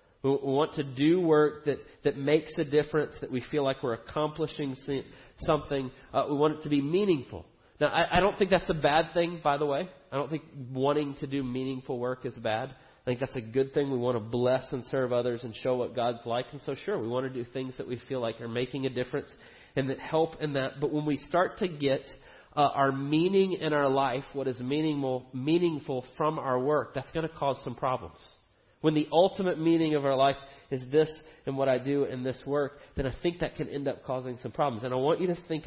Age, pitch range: 30-49, 125-150 Hz